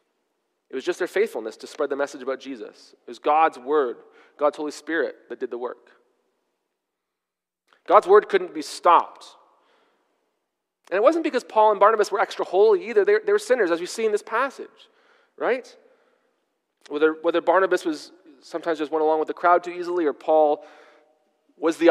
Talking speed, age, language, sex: 175 wpm, 30-49, English, male